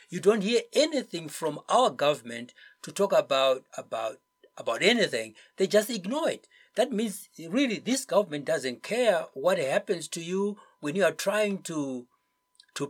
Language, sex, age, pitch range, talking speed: English, male, 60-79, 145-230 Hz, 160 wpm